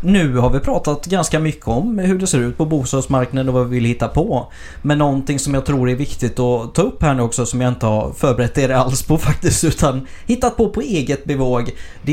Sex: male